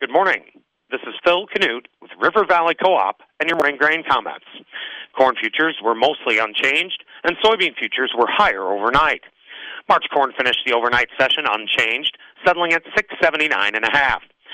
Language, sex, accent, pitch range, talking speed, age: English, male, American, 125-170 Hz, 160 wpm, 40-59